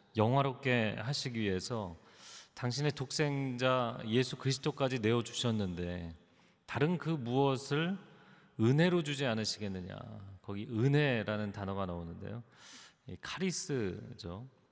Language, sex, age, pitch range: Korean, male, 40-59, 110-150 Hz